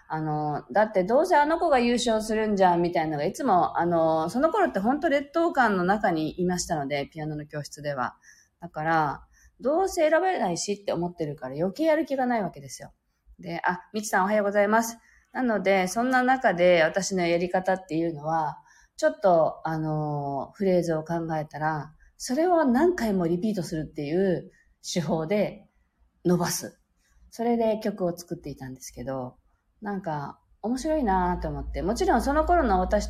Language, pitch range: Japanese, 160-265 Hz